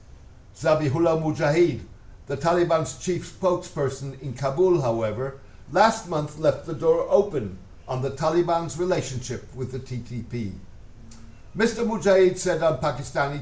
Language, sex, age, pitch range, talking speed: English, male, 60-79, 125-180 Hz, 120 wpm